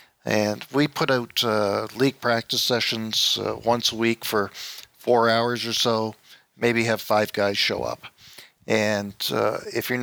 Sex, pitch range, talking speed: male, 110-125 Hz, 160 wpm